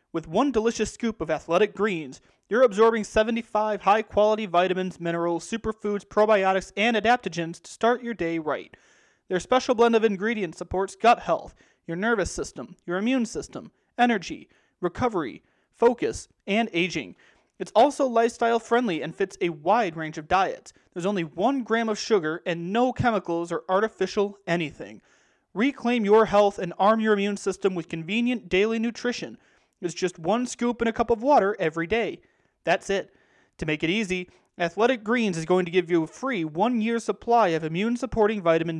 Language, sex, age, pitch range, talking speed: English, male, 30-49, 175-225 Hz, 165 wpm